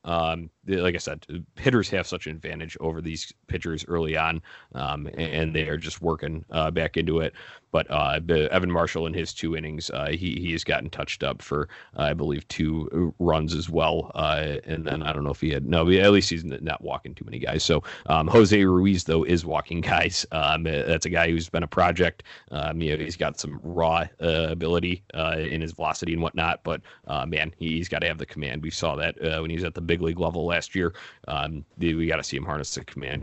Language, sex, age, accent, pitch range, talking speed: English, male, 30-49, American, 80-90 Hz, 230 wpm